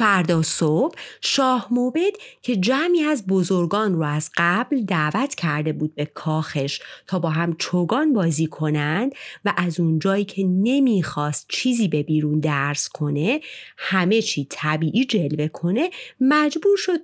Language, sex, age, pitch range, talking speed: Persian, female, 30-49, 155-240 Hz, 140 wpm